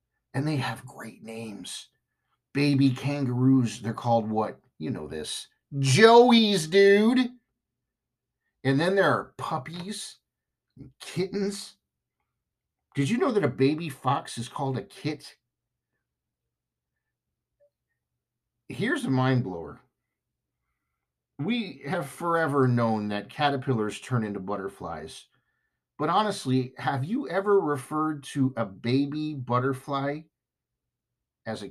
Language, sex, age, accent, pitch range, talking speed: English, male, 50-69, American, 115-150 Hz, 110 wpm